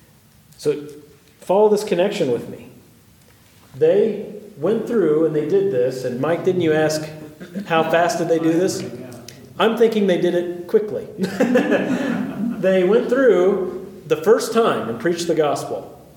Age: 40-59